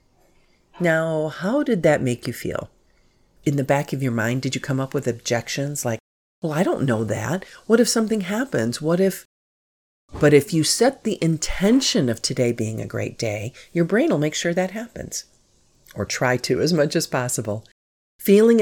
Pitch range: 115-160 Hz